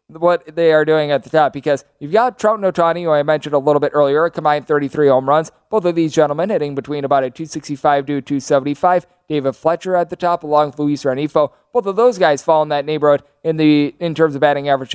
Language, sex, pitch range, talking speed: English, male, 145-175 Hz, 235 wpm